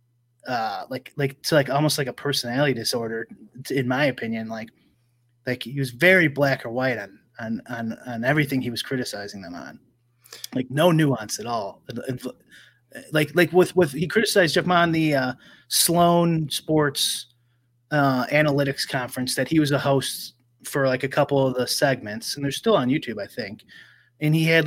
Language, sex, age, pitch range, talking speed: English, male, 30-49, 125-155 Hz, 180 wpm